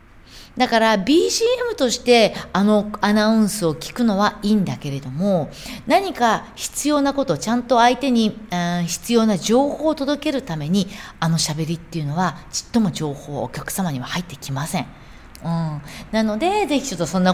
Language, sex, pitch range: Japanese, female, 160-235 Hz